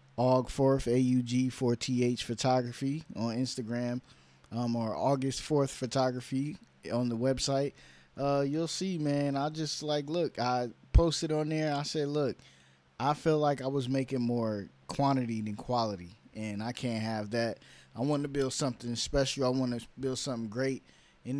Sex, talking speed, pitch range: male, 165 wpm, 115-135 Hz